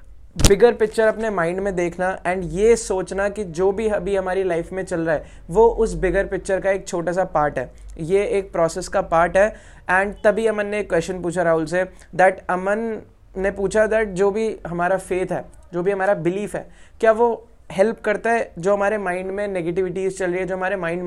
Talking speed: 210 wpm